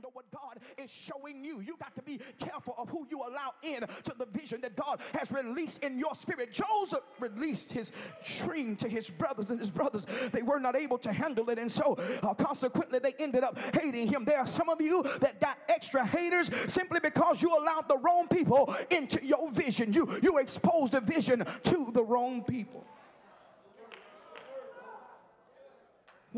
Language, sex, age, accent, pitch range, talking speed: English, male, 30-49, American, 195-290 Hz, 185 wpm